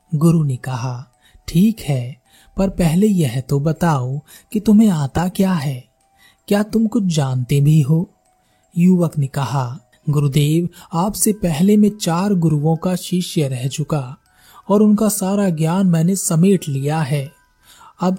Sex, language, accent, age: male, Hindi, native, 30-49